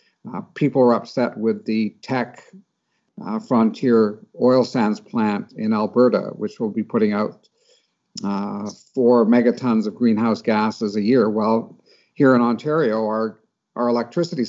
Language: English